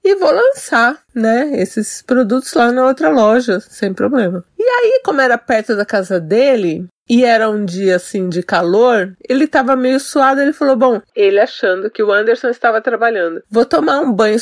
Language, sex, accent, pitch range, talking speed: Portuguese, female, Brazilian, 195-270 Hz, 185 wpm